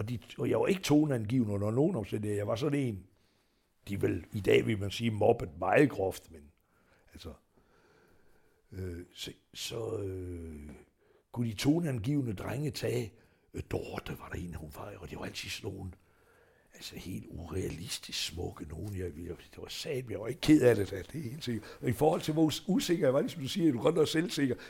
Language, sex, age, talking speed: Danish, male, 60-79, 210 wpm